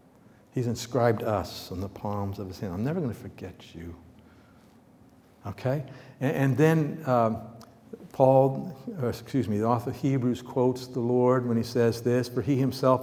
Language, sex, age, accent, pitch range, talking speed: English, male, 60-79, American, 110-145 Hz, 170 wpm